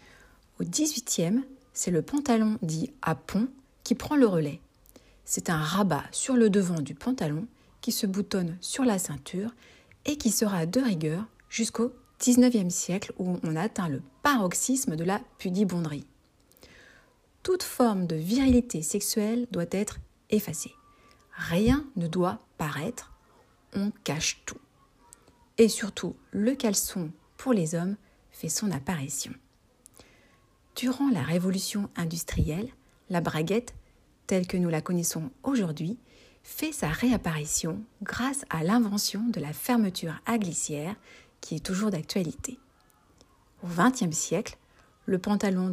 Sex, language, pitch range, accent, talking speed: female, French, 170-235 Hz, French, 130 wpm